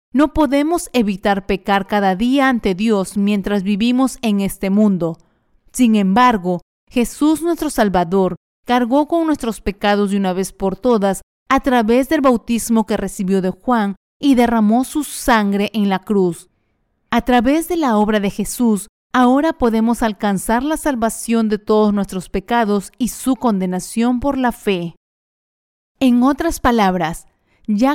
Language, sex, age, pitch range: Spanish, female, 40-59, 195-245 Hz